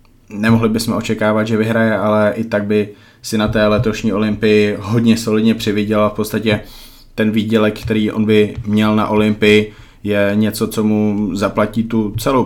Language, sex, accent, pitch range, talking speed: Czech, male, native, 105-110 Hz, 165 wpm